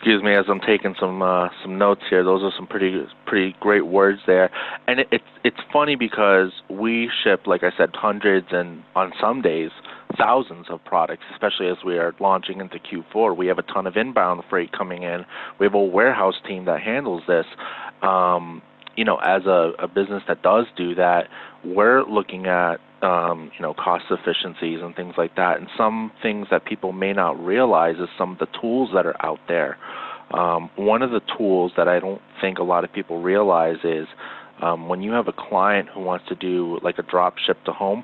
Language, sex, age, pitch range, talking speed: English, male, 30-49, 90-100 Hz, 210 wpm